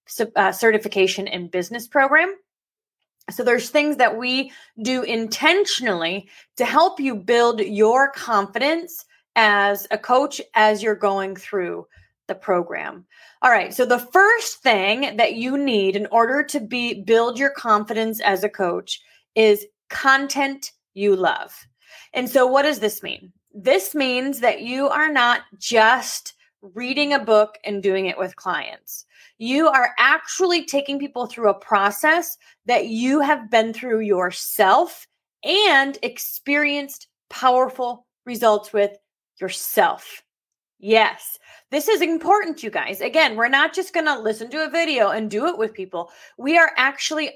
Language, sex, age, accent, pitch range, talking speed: English, female, 30-49, American, 210-290 Hz, 145 wpm